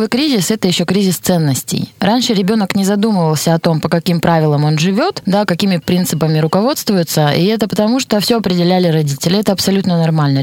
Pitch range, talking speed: 160-205 Hz, 175 wpm